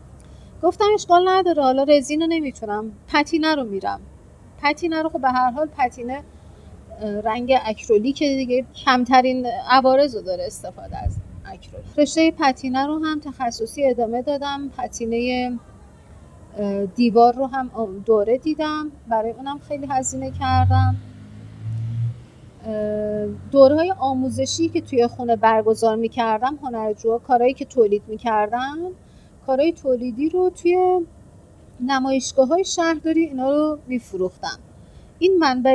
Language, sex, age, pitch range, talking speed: Persian, female, 40-59, 220-280 Hz, 120 wpm